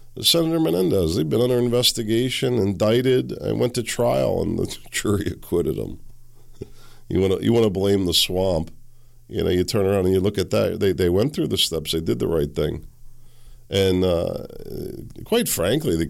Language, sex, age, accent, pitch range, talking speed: English, male, 50-69, American, 75-120 Hz, 185 wpm